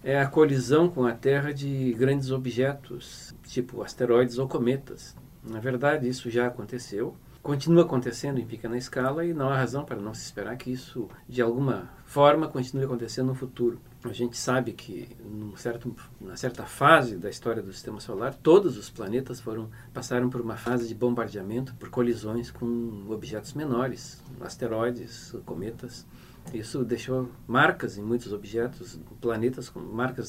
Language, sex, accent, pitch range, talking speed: Portuguese, male, Brazilian, 115-135 Hz, 155 wpm